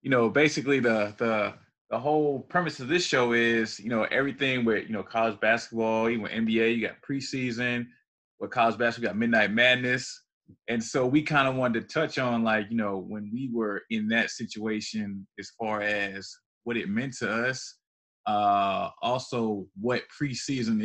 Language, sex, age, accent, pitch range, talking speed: English, male, 20-39, American, 115-145 Hz, 180 wpm